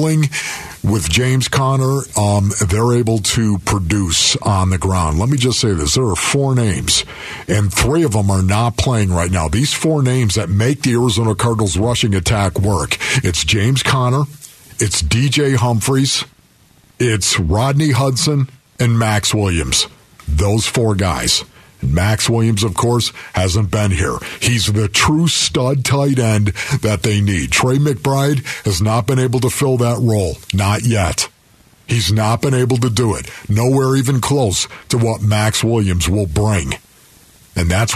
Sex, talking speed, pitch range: male, 160 wpm, 100-130 Hz